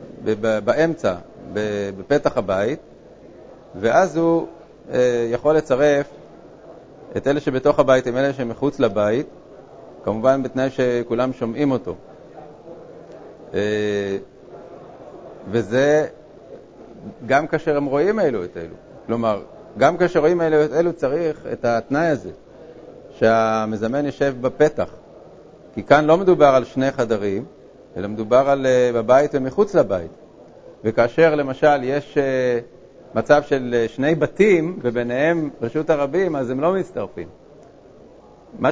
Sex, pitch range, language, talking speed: male, 120-150 Hz, Hebrew, 110 wpm